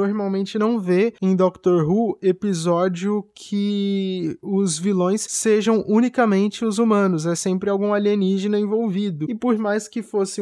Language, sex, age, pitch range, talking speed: Portuguese, male, 20-39, 180-210 Hz, 140 wpm